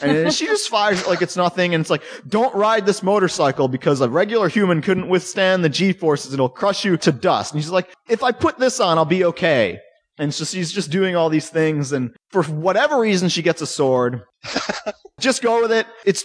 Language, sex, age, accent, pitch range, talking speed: English, male, 30-49, American, 125-185 Hz, 220 wpm